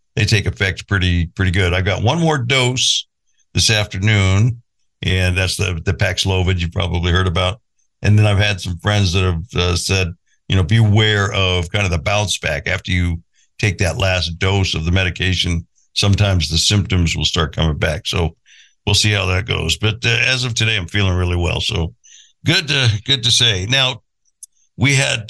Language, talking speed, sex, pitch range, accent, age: English, 195 wpm, male, 95-115 Hz, American, 60-79